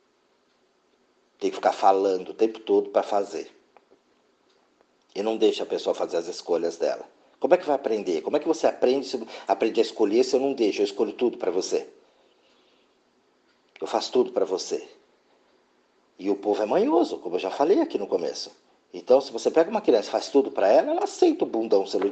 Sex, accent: male, Brazilian